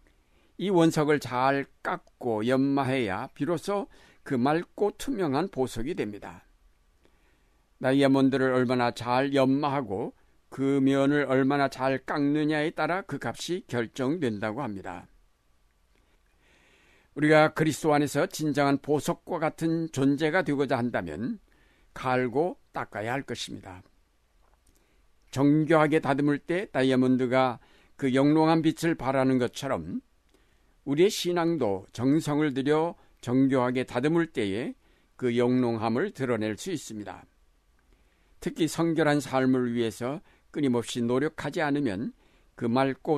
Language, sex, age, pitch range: Korean, male, 60-79, 115-150 Hz